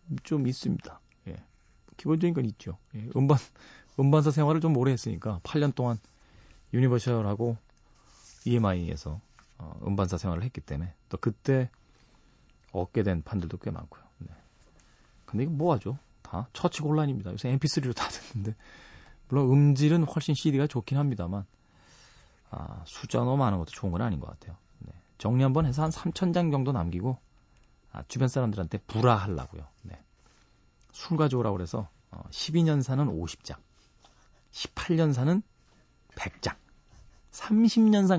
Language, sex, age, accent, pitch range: Korean, male, 40-59, native, 100-145 Hz